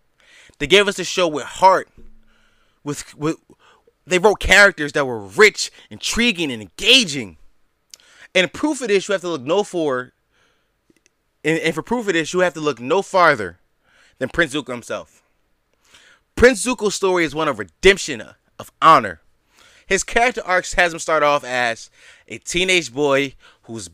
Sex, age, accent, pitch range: male, 20-39, American, 140-200 Hz